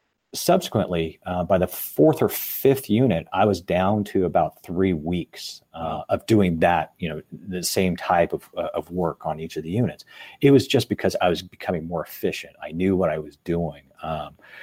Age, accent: 40-59, American